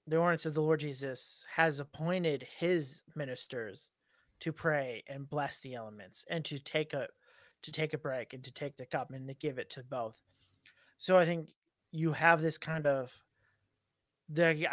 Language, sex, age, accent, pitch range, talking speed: English, male, 30-49, American, 145-165 Hz, 180 wpm